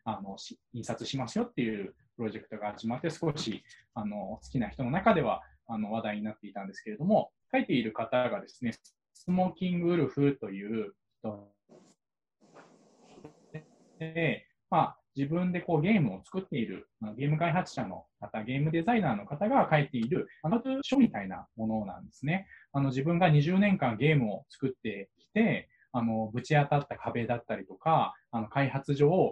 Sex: male